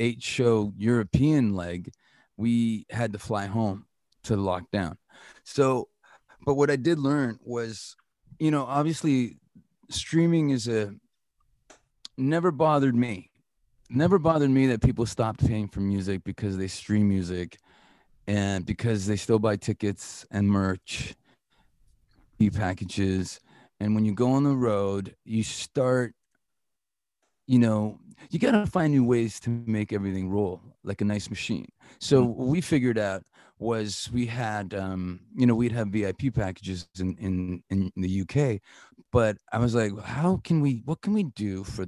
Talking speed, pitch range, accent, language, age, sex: 155 wpm, 100-125 Hz, American, English, 30-49, male